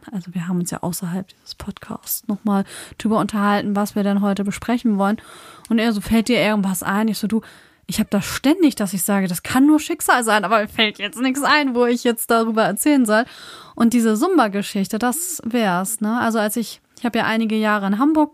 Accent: German